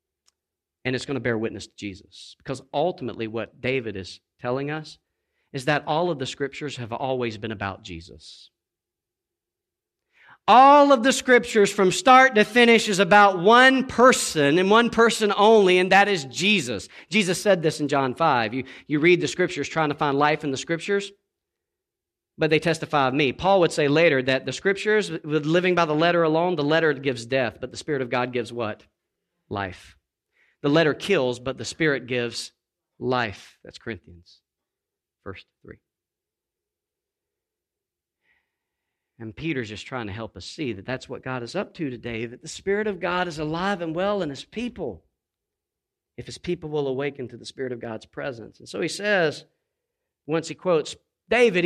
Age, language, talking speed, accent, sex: 40-59, English, 180 wpm, American, male